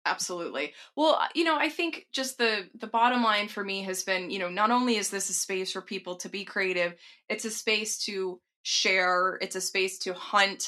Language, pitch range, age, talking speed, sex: English, 185-235 Hz, 20-39, 215 wpm, female